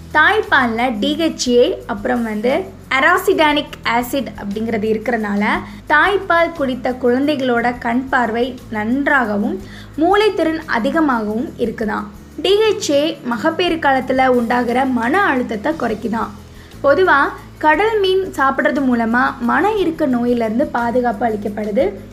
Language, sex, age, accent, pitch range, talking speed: Tamil, female, 20-39, native, 245-315 Hz, 90 wpm